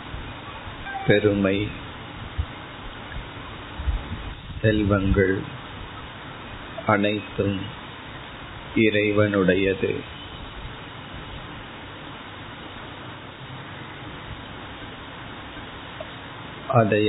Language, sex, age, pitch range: Tamil, male, 50-69, 100-115 Hz